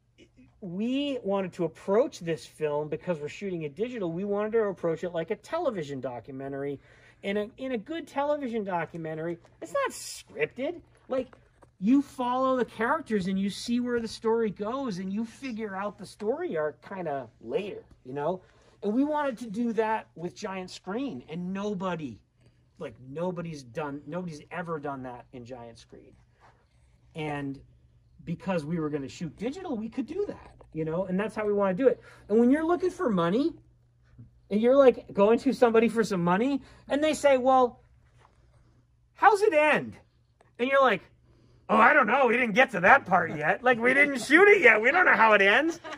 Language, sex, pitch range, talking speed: English, male, 165-255 Hz, 190 wpm